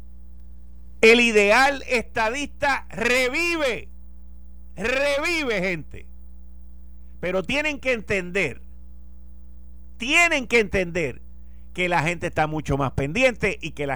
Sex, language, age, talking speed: male, Spanish, 50-69, 100 wpm